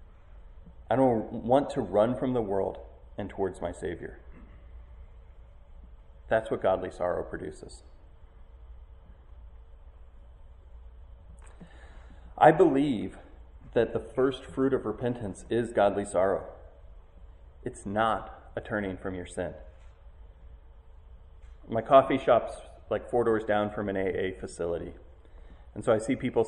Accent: American